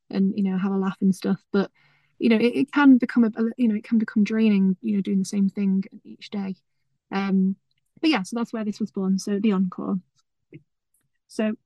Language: English